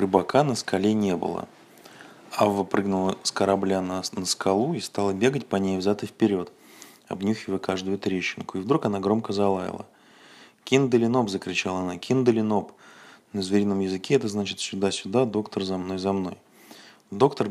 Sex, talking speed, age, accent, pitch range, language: male, 155 wpm, 20-39, native, 95-110 Hz, Russian